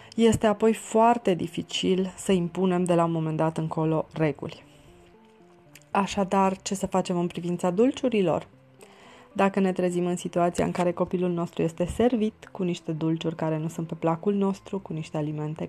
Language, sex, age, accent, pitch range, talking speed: Romanian, female, 20-39, native, 165-205 Hz, 165 wpm